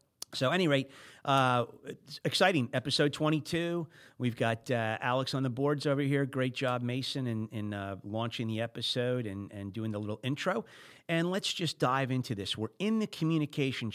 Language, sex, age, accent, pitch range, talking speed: English, male, 40-59, American, 105-140 Hz, 180 wpm